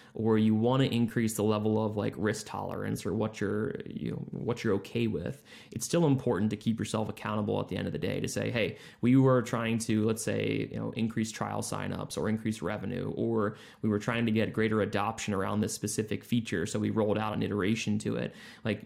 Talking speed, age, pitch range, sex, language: 225 wpm, 20-39, 110-120 Hz, male, English